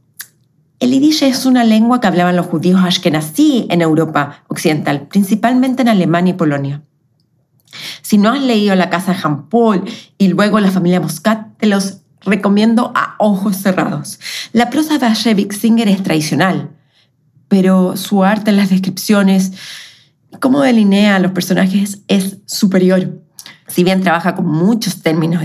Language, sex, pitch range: Spanish, female, 160-220 Hz